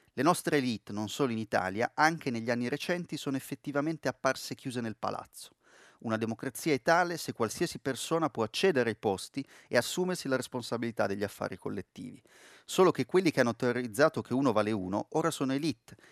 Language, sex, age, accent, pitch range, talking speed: Italian, male, 30-49, native, 110-140 Hz, 180 wpm